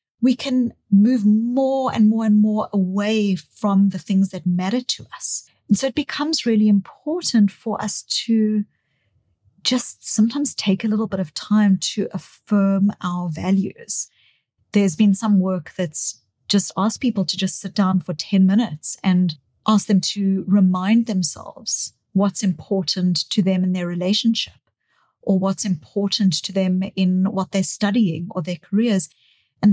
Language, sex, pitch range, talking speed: English, female, 180-215 Hz, 155 wpm